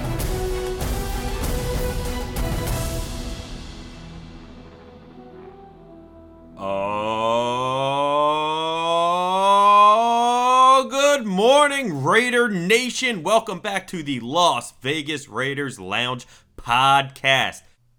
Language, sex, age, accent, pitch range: English, male, 40-59, American, 110-170 Hz